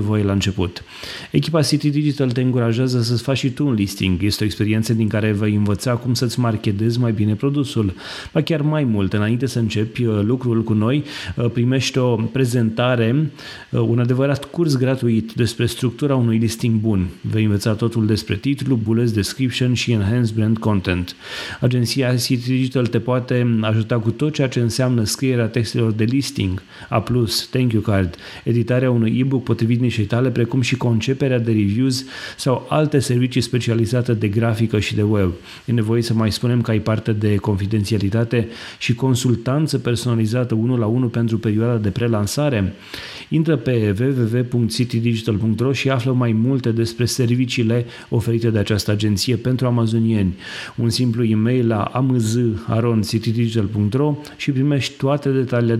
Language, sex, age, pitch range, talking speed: Romanian, male, 30-49, 110-125 Hz, 155 wpm